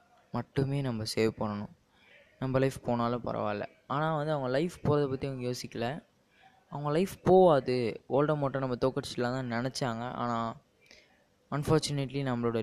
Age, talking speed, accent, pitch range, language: 20-39, 130 wpm, native, 115-145 Hz, Tamil